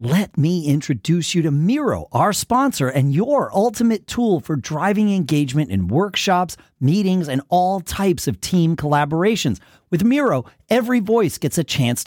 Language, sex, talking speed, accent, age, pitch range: English, male, 155 wpm, American, 40-59, 160-215 Hz